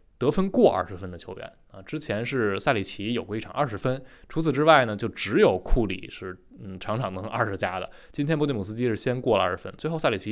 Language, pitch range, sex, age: Chinese, 100-140 Hz, male, 20-39